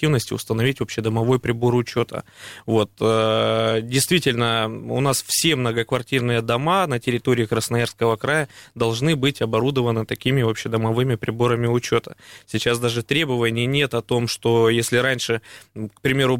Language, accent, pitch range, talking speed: Russian, native, 115-135 Hz, 120 wpm